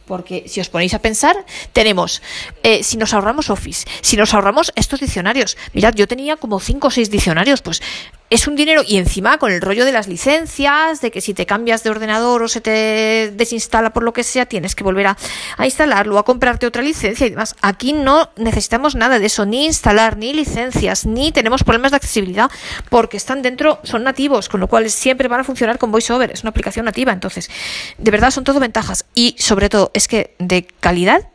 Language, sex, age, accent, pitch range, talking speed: Spanish, female, 40-59, Spanish, 195-235 Hz, 210 wpm